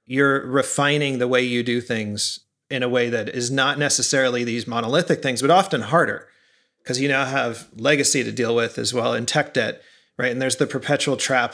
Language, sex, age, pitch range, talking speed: English, male, 30-49, 120-145 Hz, 205 wpm